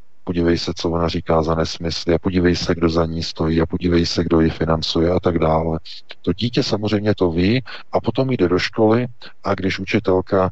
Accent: native